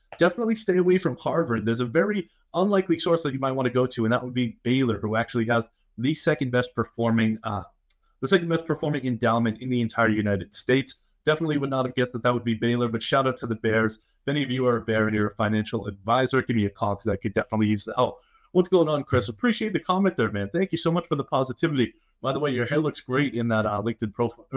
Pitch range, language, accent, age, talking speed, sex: 110-140 Hz, English, American, 30-49, 260 wpm, male